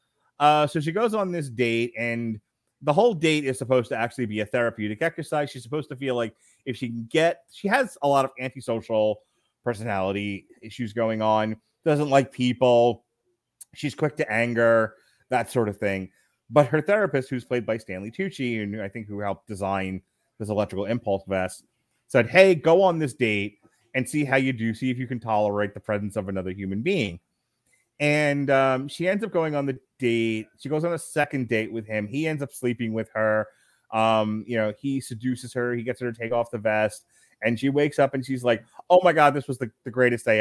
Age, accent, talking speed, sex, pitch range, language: 30-49, American, 210 wpm, male, 110-145 Hz, English